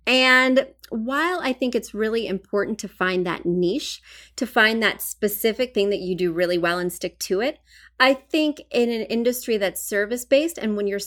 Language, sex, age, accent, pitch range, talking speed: English, female, 30-49, American, 185-255 Hz, 190 wpm